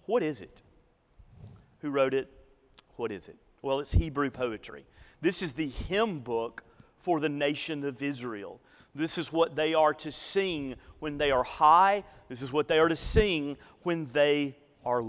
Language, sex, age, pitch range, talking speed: English, male, 40-59, 130-155 Hz, 175 wpm